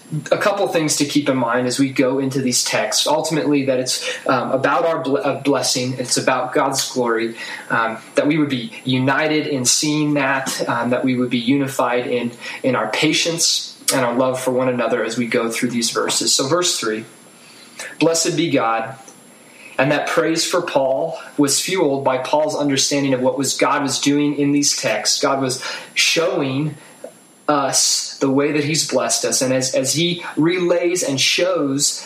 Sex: male